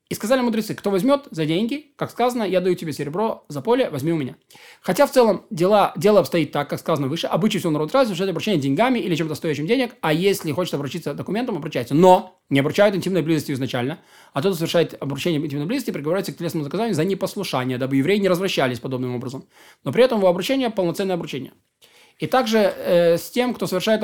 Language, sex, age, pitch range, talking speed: Russian, male, 20-39, 150-205 Hz, 210 wpm